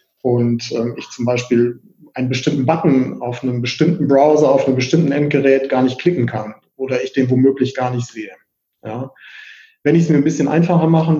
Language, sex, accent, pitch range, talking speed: German, male, German, 125-150 Hz, 190 wpm